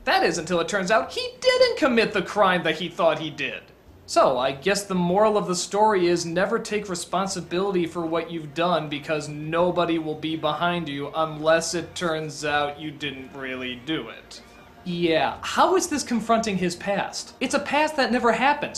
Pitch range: 170-270 Hz